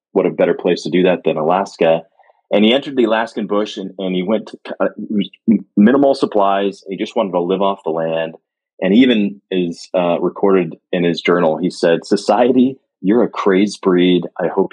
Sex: male